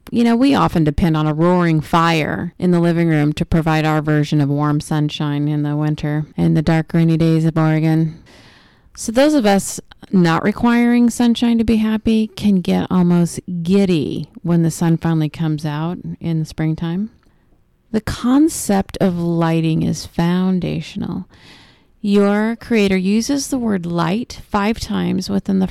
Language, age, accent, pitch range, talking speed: English, 30-49, American, 165-200 Hz, 160 wpm